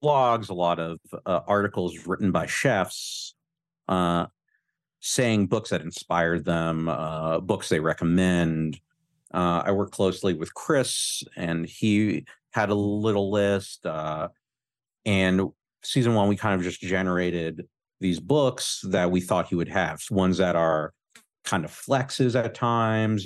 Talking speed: 145 wpm